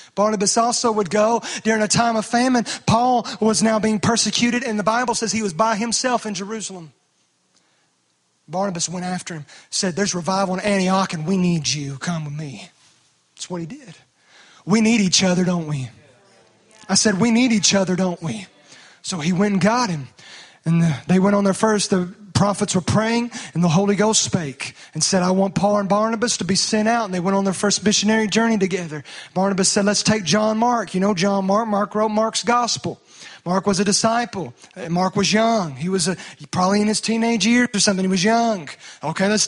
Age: 30-49